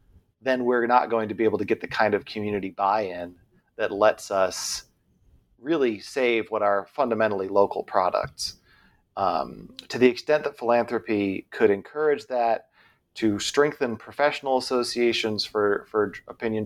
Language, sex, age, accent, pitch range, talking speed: English, male, 30-49, American, 100-115 Hz, 145 wpm